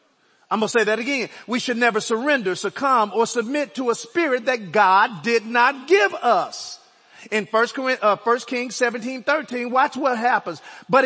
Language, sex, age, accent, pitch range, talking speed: English, male, 40-59, American, 235-315 Hz, 175 wpm